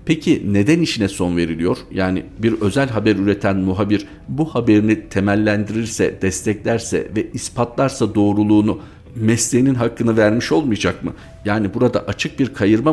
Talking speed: 130 wpm